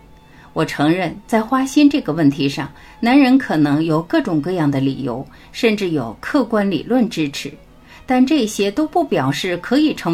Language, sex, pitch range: Chinese, female, 150-235 Hz